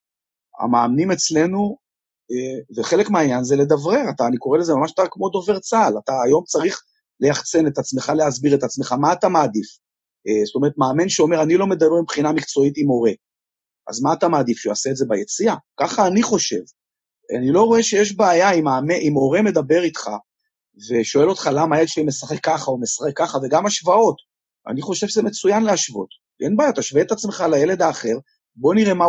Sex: male